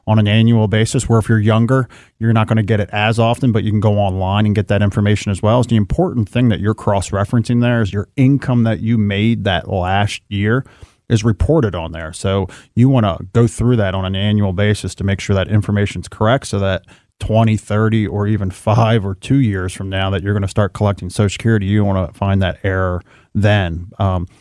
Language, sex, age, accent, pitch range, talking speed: English, male, 30-49, American, 100-115 Hz, 230 wpm